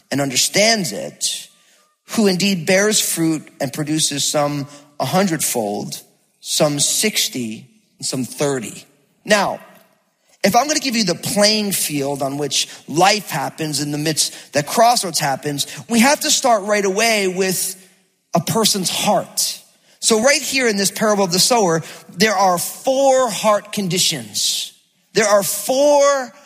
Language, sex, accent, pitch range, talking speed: English, male, American, 175-230 Hz, 145 wpm